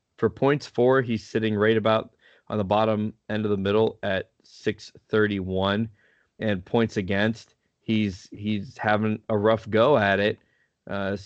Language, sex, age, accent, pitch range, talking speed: English, male, 20-39, American, 100-115 Hz, 155 wpm